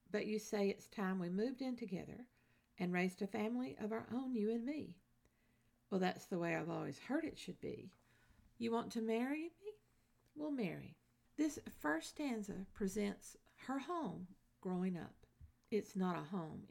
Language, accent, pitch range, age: English, American, 185-245 Hz, 50-69